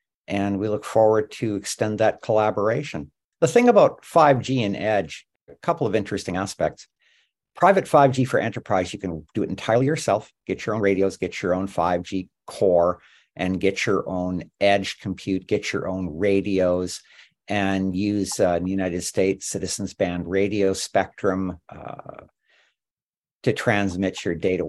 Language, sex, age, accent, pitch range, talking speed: English, male, 50-69, American, 95-120 Hz, 155 wpm